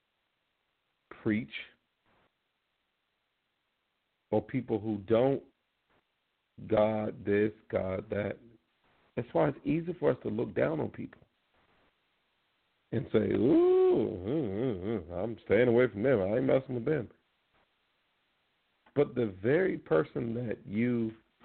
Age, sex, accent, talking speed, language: 50-69, male, American, 120 wpm, English